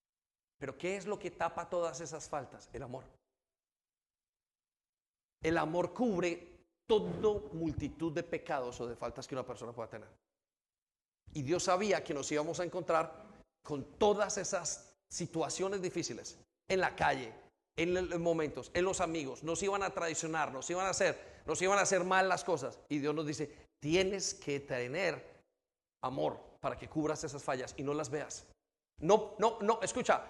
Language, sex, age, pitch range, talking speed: Spanish, male, 40-59, 155-210 Hz, 165 wpm